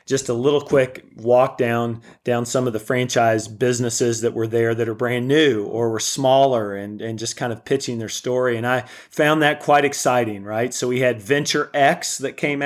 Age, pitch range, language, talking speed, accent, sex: 40-59, 115-135 Hz, English, 210 wpm, American, male